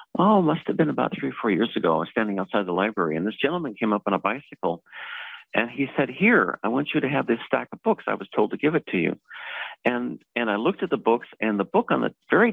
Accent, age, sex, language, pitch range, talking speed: American, 50-69, male, English, 95-135 Hz, 280 wpm